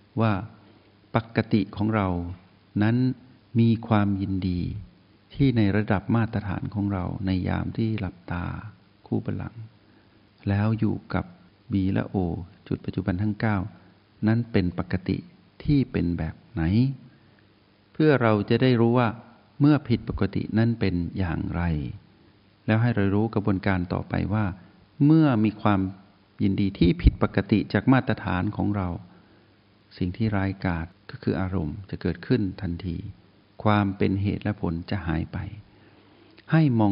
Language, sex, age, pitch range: Thai, male, 60-79, 95-110 Hz